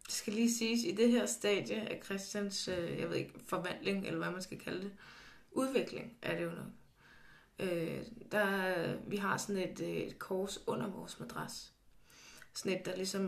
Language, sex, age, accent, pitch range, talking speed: Danish, female, 20-39, native, 195-245 Hz, 180 wpm